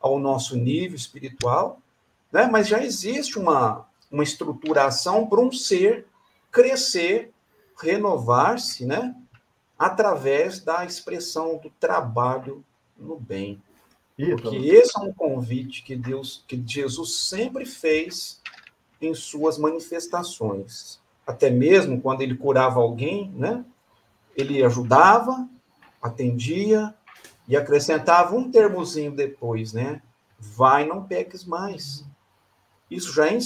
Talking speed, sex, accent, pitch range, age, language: 115 wpm, male, Brazilian, 120-185 Hz, 50-69, Portuguese